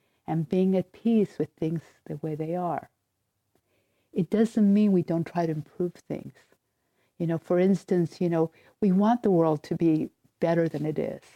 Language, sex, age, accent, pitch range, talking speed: English, female, 50-69, American, 160-190 Hz, 185 wpm